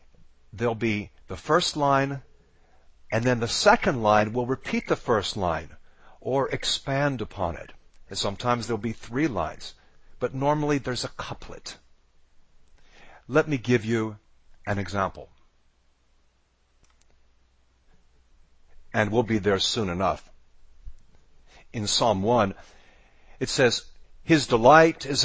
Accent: American